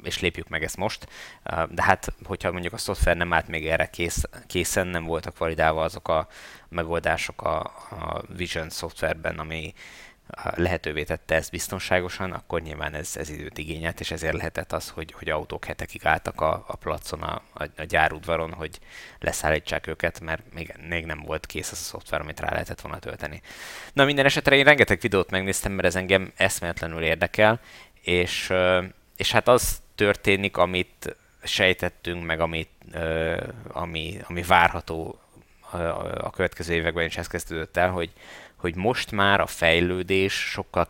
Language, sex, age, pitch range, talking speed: Hungarian, male, 20-39, 80-95 Hz, 155 wpm